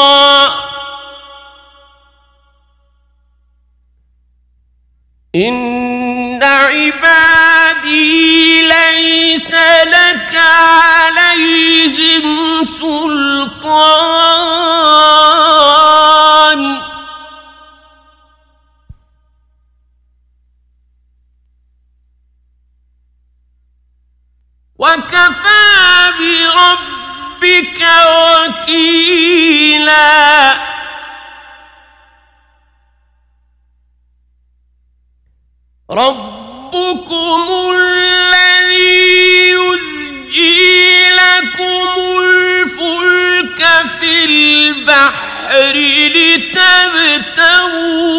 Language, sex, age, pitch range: Arabic, male, 50-69, 210-330 Hz